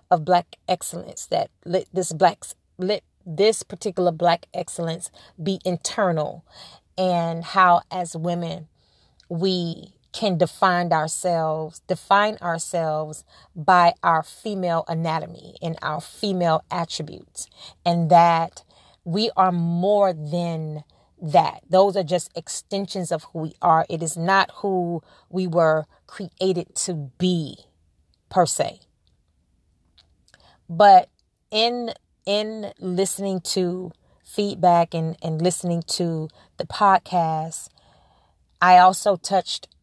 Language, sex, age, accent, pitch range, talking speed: English, female, 30-49, American, 155-185 Hz, 110 wpm